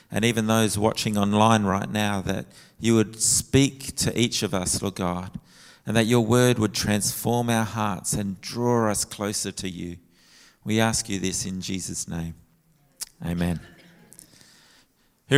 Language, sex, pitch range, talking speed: English, male, 110-135 Hz, 155 wpm